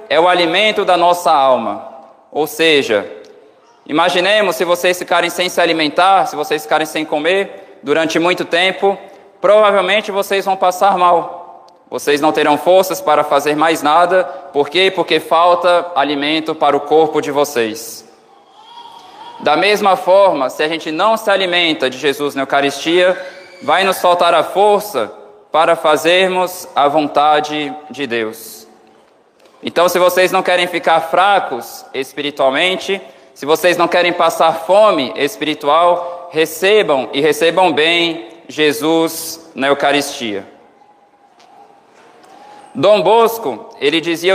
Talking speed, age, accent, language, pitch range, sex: 130 wpm, 20-39, Brazilian, Portuguese, 155-195 Hz, male